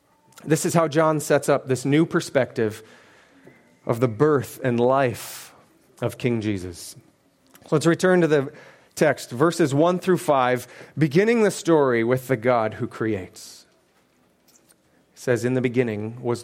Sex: male